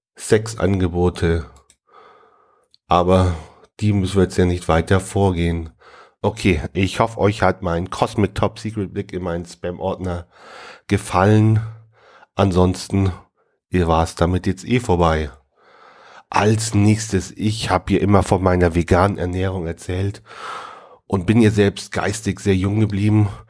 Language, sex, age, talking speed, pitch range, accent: German, male, 40-59, 130 wpm, 90-105 Hz, German